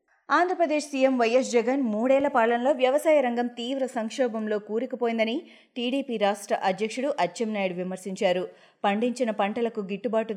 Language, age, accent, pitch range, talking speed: Telugu, 30-49, native, 195-255 Hz, 110 wpm